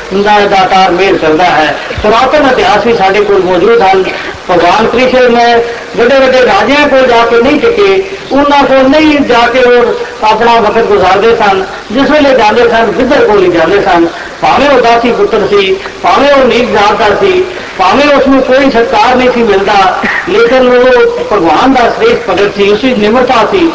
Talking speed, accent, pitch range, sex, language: 145 wpm, native, 205-280 Hz, female, Hindi